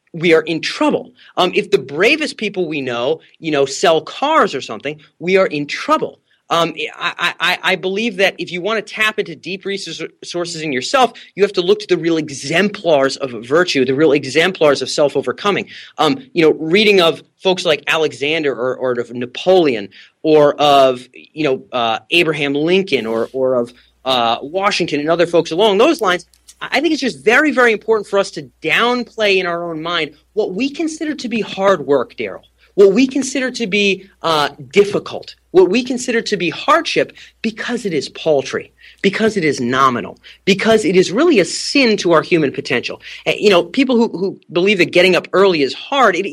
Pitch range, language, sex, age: 155-230 Hz, English, male, 30-49